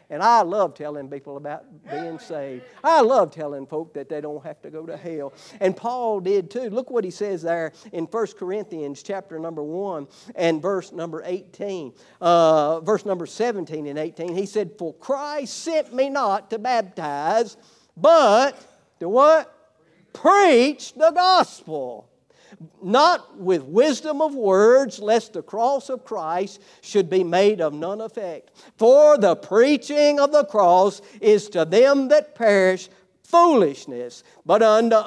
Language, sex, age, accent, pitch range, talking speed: English, male, 50-69, American, 185-275 Hz, 155 wpm